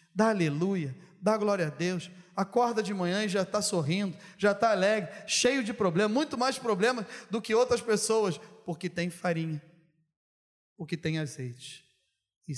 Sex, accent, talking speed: male, Brazilian, 155 wpm